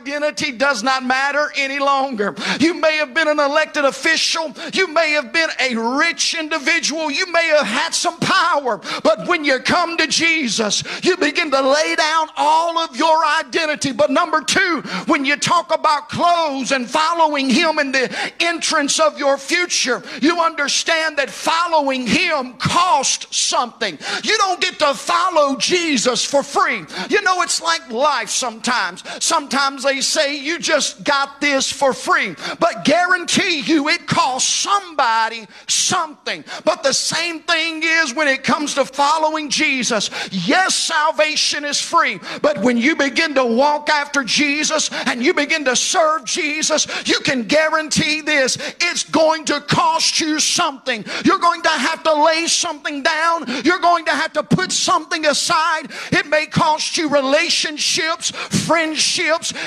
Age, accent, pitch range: 50-69, American, 280-330 Hz